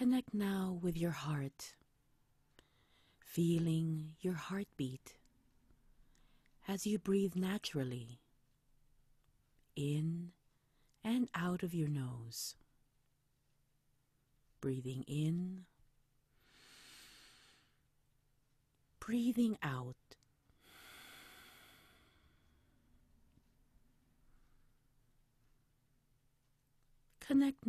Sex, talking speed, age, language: female, 50 wpm, 40-59, English